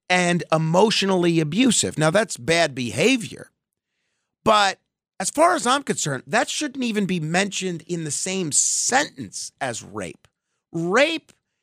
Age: 40-59